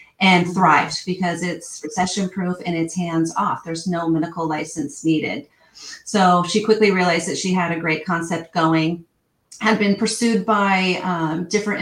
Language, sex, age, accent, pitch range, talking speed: English, female, 30-49, American, 165-200 Hz, 165 wpm